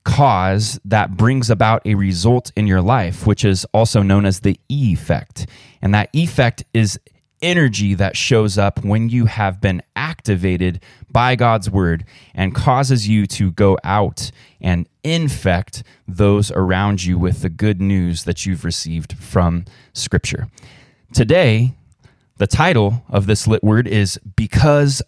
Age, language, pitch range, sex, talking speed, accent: 20-39, English, 100-125 Hz, male, 145 wpm, American